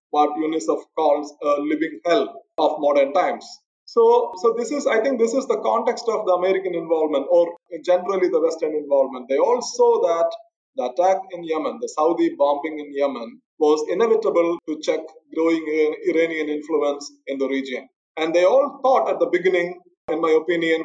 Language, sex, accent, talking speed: English, male, Indian, 175 wpm